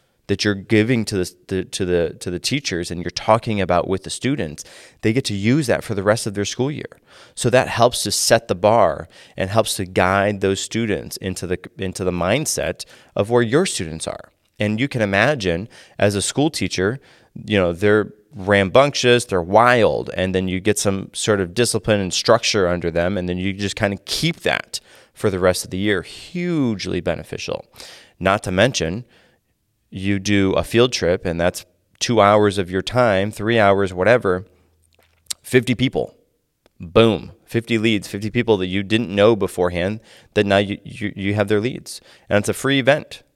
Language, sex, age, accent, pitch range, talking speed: English, male, 30-49, American, 95-115 Hz, 190 wpm